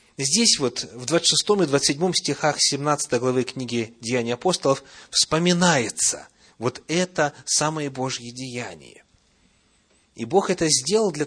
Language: Russian